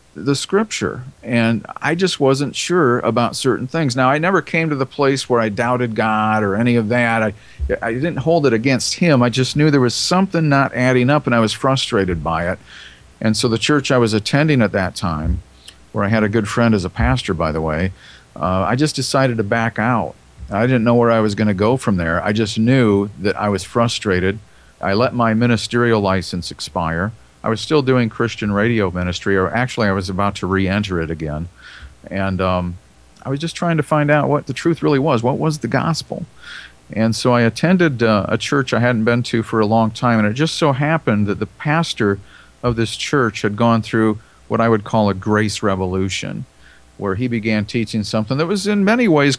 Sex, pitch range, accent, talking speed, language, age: male, 100-135 Hz, American, 215 wpm, English, 50-69